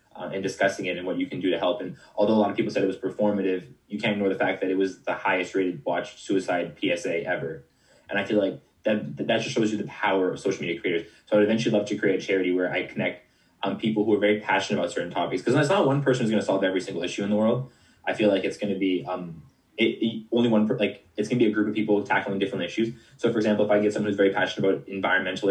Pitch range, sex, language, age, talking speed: 95-105 Hz, male, English, 20-39, 290 wpm